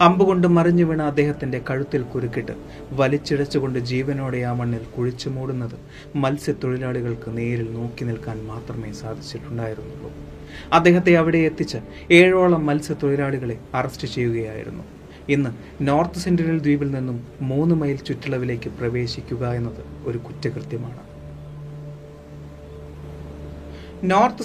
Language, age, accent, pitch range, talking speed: Malayalam, 30-49, native, 115-165 Hz, 95 wpm